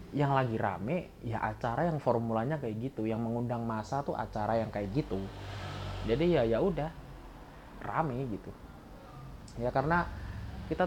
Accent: native